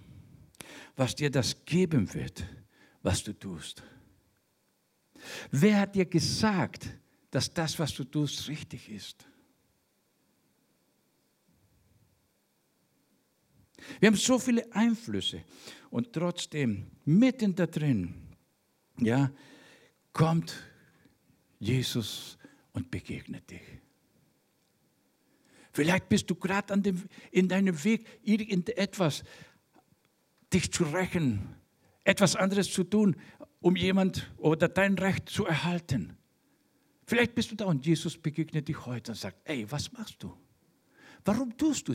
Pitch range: 130-190 Hz